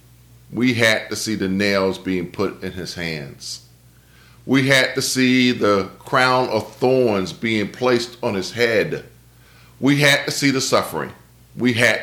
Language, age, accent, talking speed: English, 40-59, American, 160 wpm